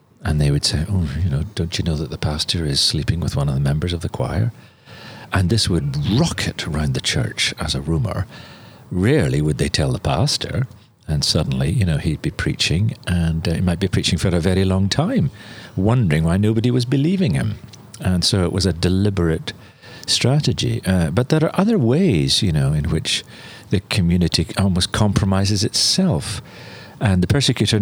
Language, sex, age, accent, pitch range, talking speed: English, male, 50-69, British, 85-125 Hz, 190 wpm